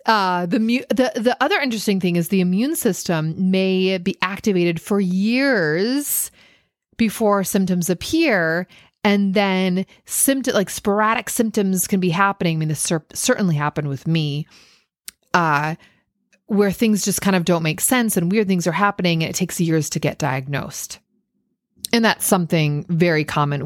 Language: English